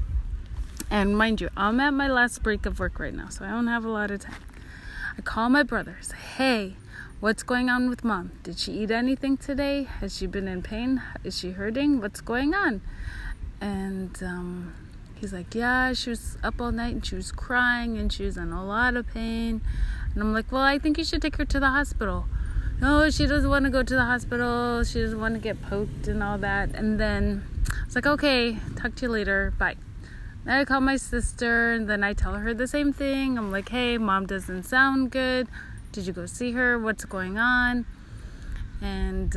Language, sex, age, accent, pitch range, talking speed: English, female, 30-49, American, 195-255 Hz, 210 wpm